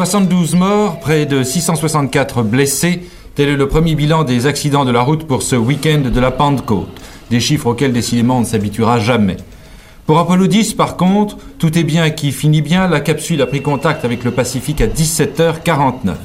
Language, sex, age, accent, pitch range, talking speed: French, male, 40-59, French, 125-170 Hz, 190 wpm